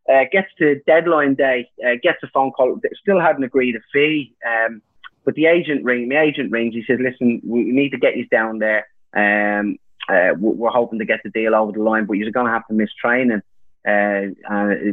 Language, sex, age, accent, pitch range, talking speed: English, male, 20-39, British, 110-145 Hz, 225 wpm